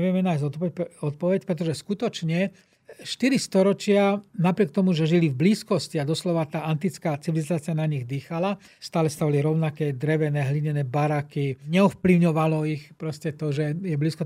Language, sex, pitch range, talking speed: Slovak, male, 155-195 Hz, 145 wpm